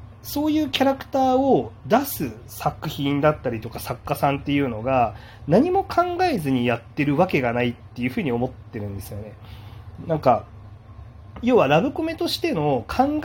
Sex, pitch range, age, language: male, 110-160 Hz, 30-49, Japanese